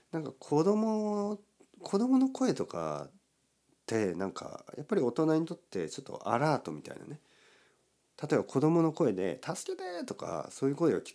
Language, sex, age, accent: Japanese, male, 40-59, native